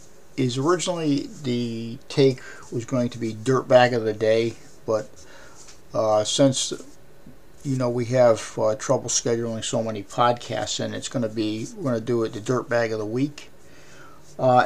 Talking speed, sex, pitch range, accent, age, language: 175 wpm, male, 110-130 Hz, American, 50-69, English